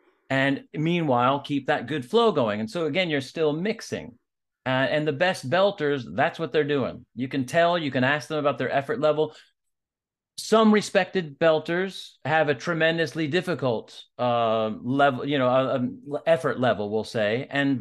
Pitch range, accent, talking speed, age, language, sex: 125-155 Hz, American, 165 wpm, 40-59, English, male